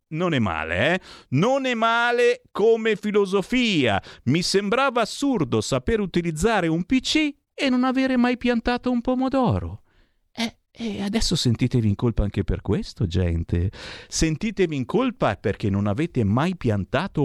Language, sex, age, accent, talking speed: Italian, male, 50-69, native, 145 wpm